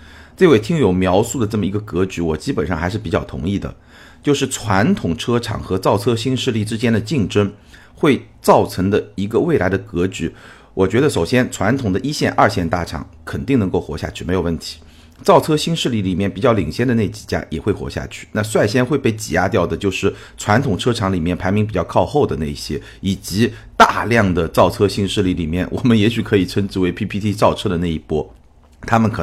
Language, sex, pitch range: Chinese, male, 90-115 Hz